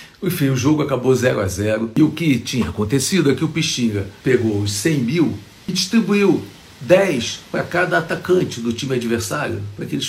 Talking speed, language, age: 190 wpm, Portuguese, 60-79